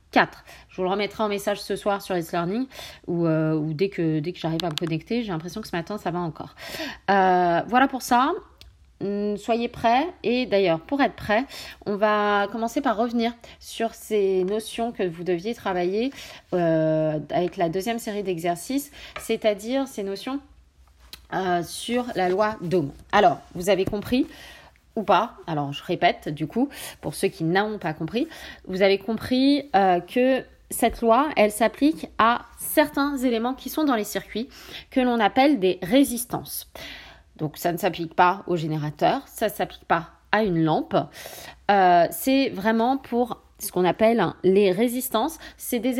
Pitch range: 180-255 Hz